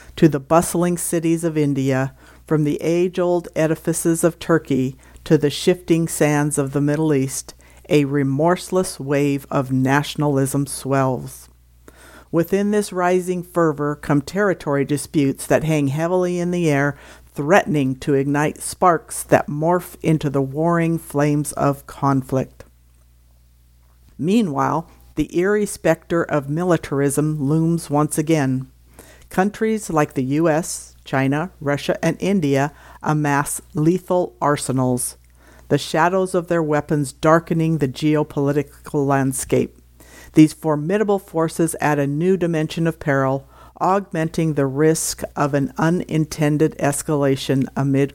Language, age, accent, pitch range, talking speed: English, 50-69, American, 140-165 Hz, 120 wpm